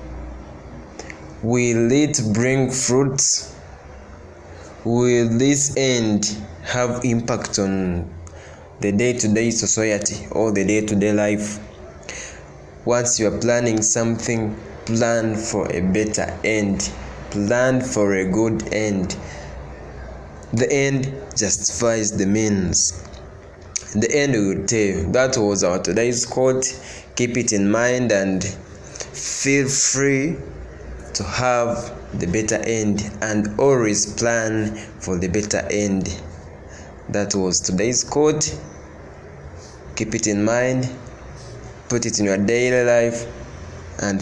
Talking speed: 110 wpm